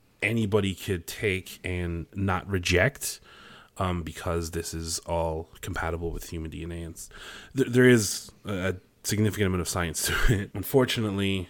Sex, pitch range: male, 85-100 Hz